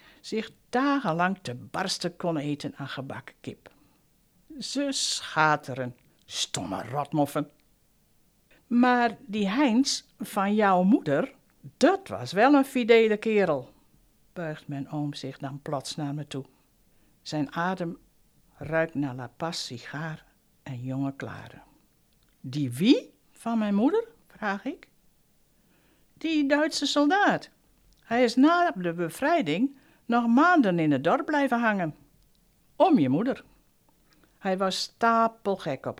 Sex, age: female, 60-79